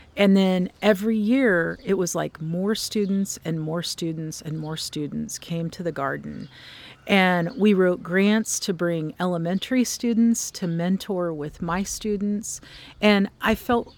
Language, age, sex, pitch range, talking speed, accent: English, 40-59, female, 170-210 Hz, 150 wpm, American